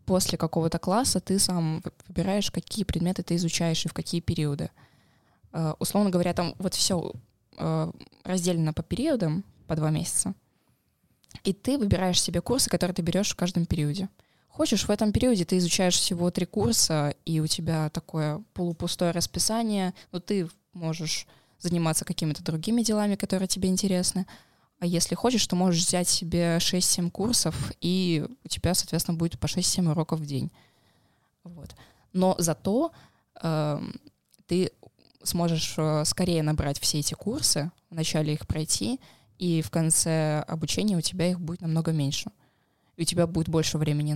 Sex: female